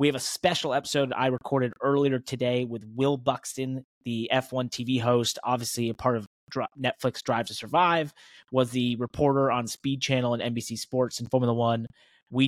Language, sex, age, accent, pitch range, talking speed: English, male, 20-39, American, 115-135 Hz, 180 wpm